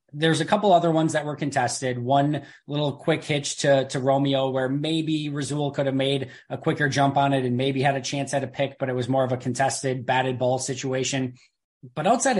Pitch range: 130-150 Hz